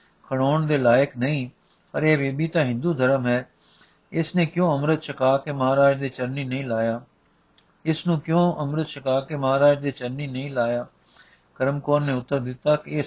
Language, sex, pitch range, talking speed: Punjabi, male, 125-155 Hz, 180 wpm